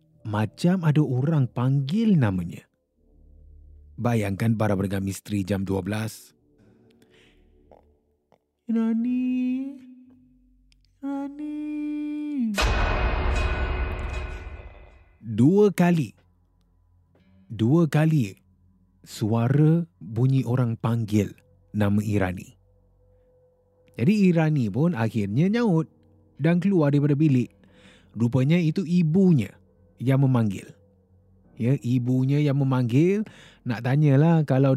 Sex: male